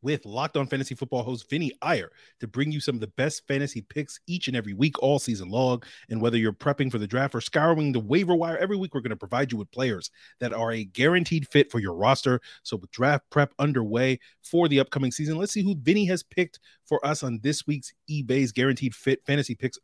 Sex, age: male, 30-49